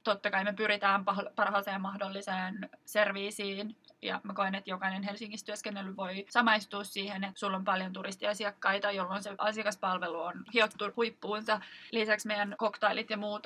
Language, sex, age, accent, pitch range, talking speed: Finnish, female, 20-39, native, 195-215 Hz, 145 wpm